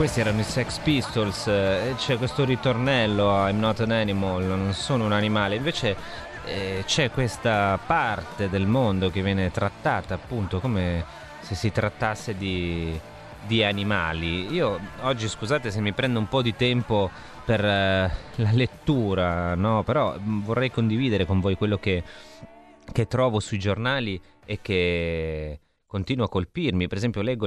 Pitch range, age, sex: 95-120 Hz, 30-49, male